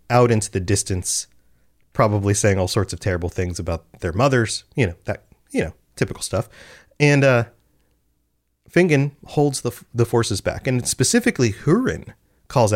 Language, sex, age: English, male, 30-49